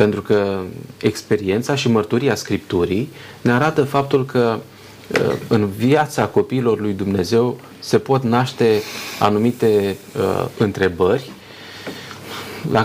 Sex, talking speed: male, 100 wpm